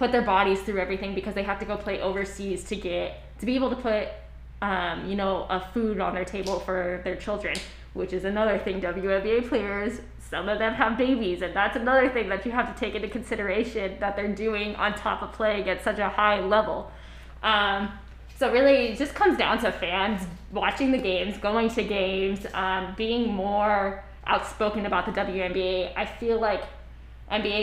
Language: English